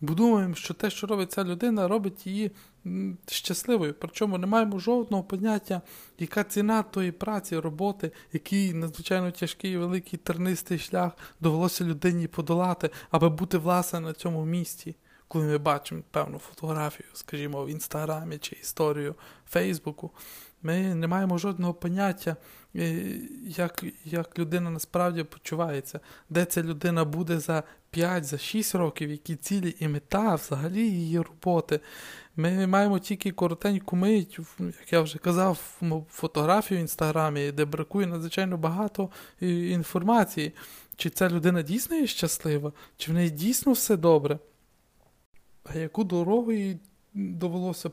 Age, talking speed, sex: 20-39, 135 wpm, male